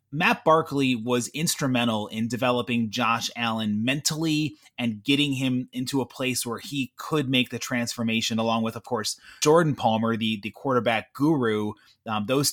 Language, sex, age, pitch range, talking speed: English, male, 30-49, 115-150 Hz, 160 wpm